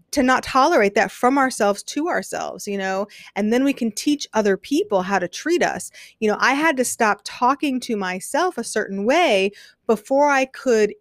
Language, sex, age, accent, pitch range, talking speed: English, female, 30-49, American, 200-275 Hz, 195 wpm